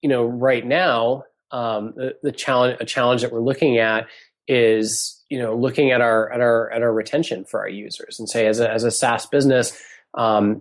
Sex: male